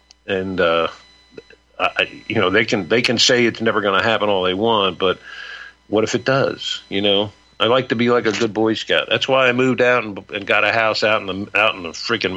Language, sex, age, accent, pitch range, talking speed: English, male, 50-69, American, 100-115 Hz, 250 wpm